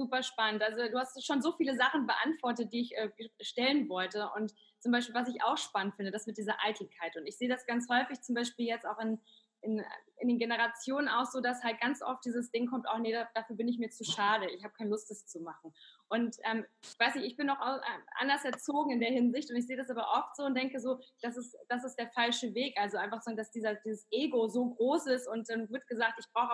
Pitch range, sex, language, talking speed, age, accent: 220-255 Hz, female, German, 255 wpm, 20-39, German